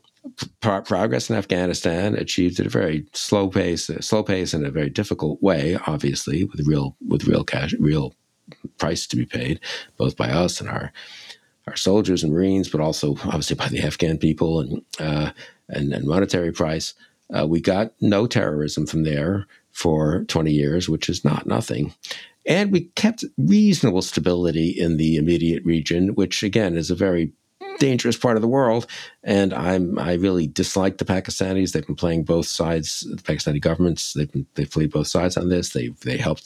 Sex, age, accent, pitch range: male, 60-79, American, 80-100 Hz